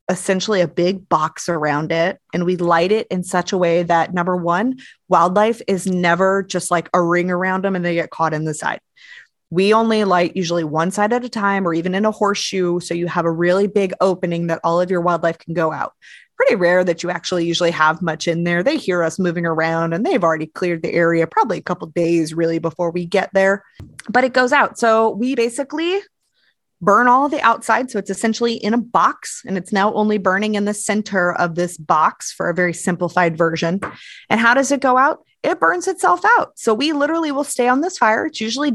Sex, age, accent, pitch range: female, 20-39, American, 175-235 Hz